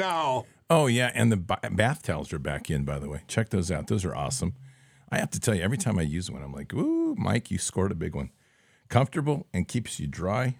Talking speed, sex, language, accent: 240 wpm, male, English, American